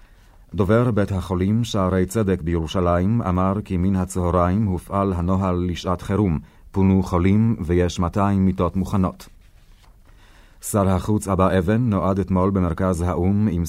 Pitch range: 90-100 Hz